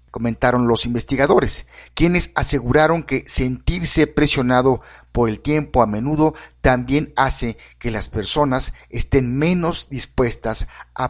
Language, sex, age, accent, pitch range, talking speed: English, male, 50-69, Mexican, 110-145 Hz, 120 wpm